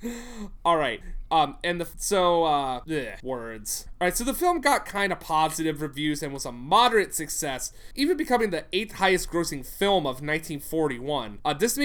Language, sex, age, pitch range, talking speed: English, male, 30-49, 135-195 Hz, 155 wpm